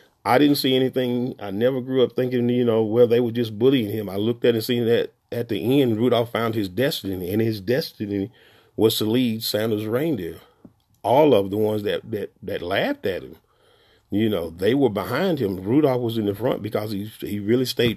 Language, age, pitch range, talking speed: English, 40-59, 105-125 Hz, 215 wpm